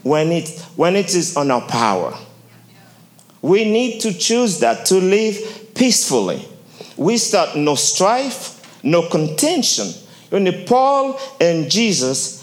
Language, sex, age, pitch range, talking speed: English, male, 50-69, 150-225 Hz, 125 wpm